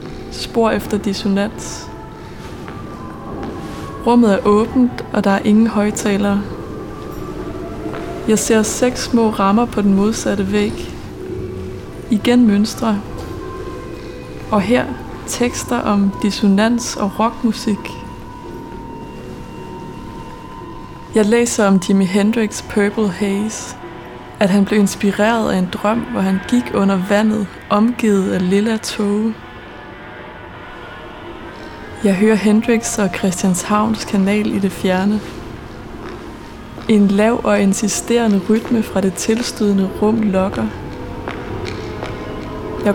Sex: female